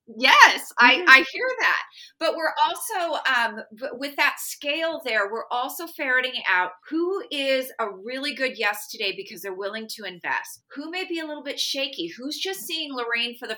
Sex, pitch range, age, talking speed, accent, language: female, 200-275 Hz, 30-49, 185 wpm, American, English